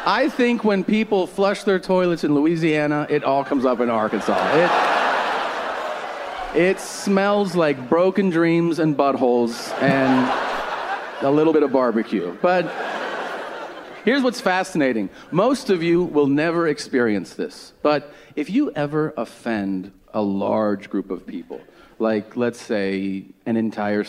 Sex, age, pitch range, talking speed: male, 40-59, 140-200 Hz, 135 wpm